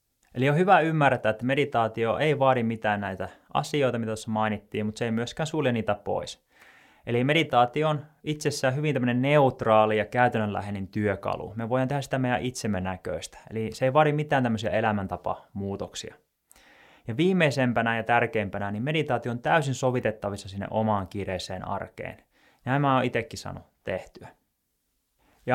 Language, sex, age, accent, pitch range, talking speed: Finnish, male, 20-39, native, 105-130 Hz, 155 wpm